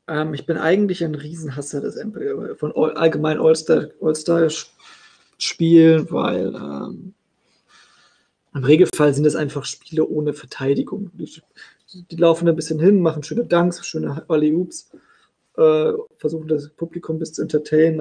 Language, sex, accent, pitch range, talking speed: German, male, German, 160-195 Hz, 135 wpm